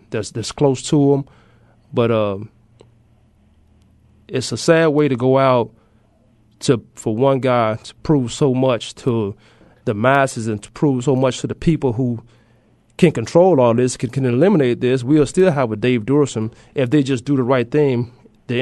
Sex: male